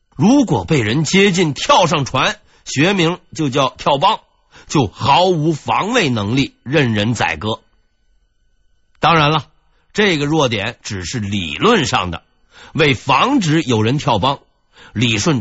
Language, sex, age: Chinese, male, 50-69